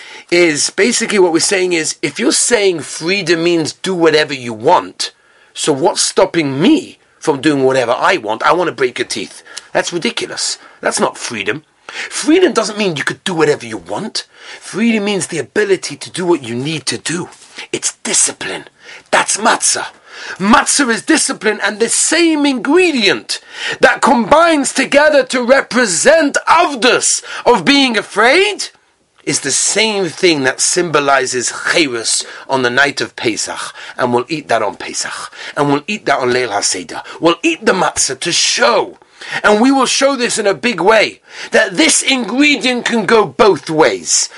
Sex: male